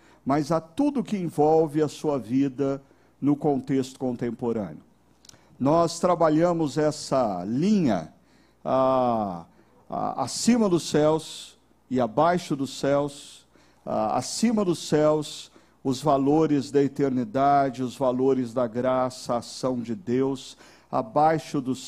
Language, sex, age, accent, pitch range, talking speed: Portuguese, male, 50-69, Brazilian, 140-185 Hz, 115 wpm